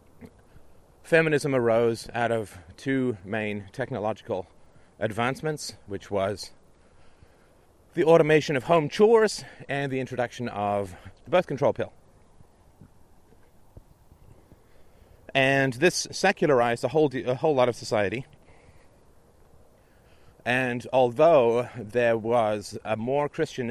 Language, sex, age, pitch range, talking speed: English, male, 30-49, 100-130 Hz, 105 wpm